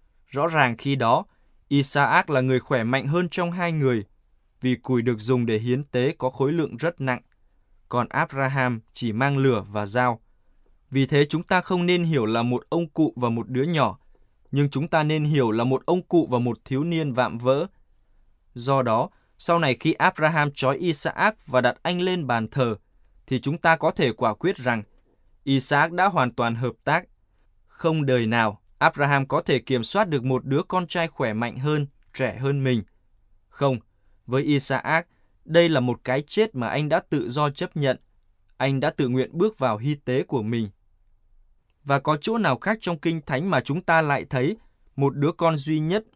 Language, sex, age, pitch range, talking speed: Vietnamese, male, 20-39, 120-160 Hz, 200 wpm